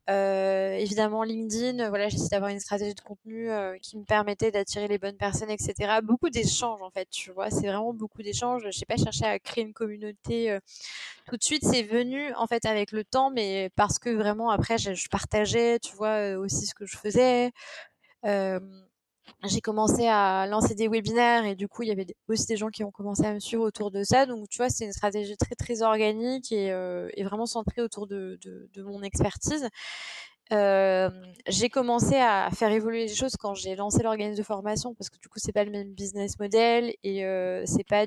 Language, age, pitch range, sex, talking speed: French, 20-39, 195-230 Hz, female, 210 wpm